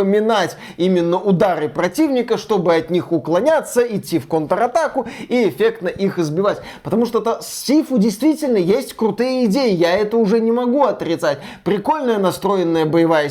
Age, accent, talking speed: 20-39, native, 140 wpm